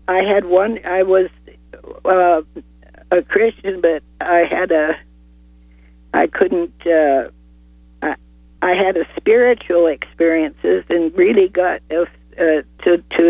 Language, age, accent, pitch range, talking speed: English, 50-69, American, 150-185 Hz, 120 wpm